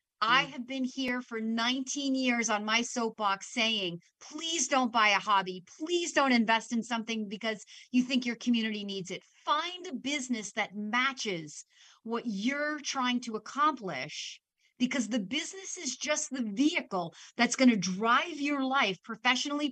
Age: 40-59